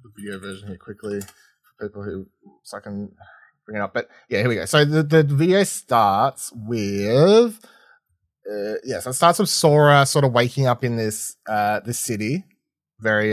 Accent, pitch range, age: Australian, 100-135 Hz, 20-39